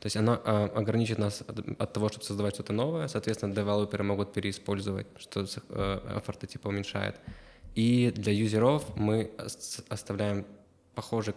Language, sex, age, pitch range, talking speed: Ukrainian, male, 20-39, 100-110 Hz, 130 wpm